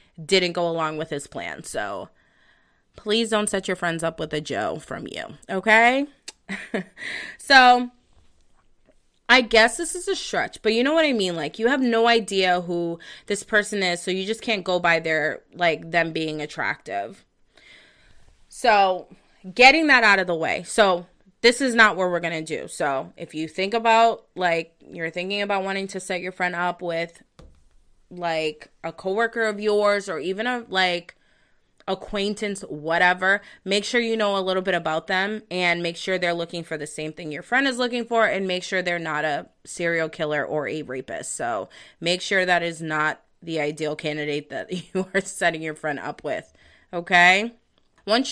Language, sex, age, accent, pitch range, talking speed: English, female, 20-39, American, 165-215 Hz, 185 wpm